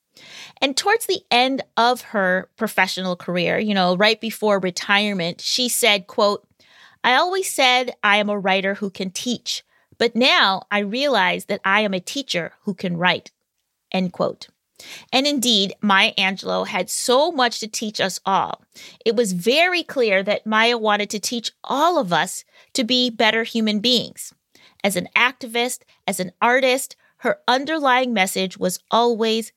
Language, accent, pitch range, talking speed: English, American, 190-245 Hz, 160 wpm